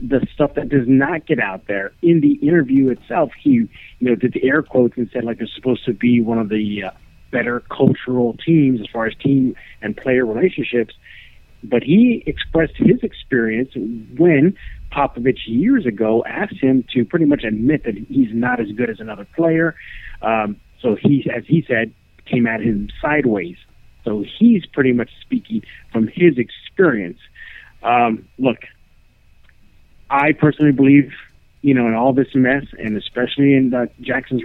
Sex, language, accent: male, English, American